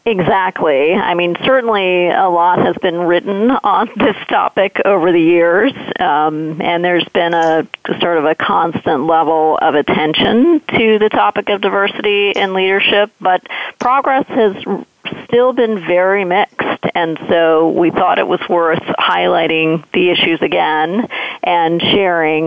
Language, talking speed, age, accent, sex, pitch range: English, 145 wpm, 40-59, American, female, 165-200 Hz